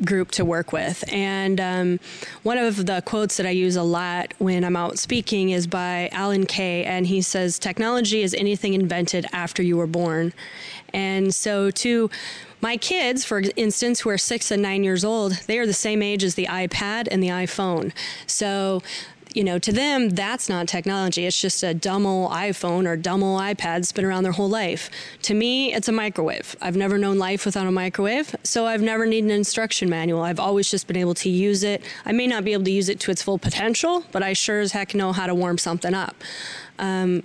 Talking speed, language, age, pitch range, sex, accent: 215 wpm, English, 20-39, 180-215 Hz, female, American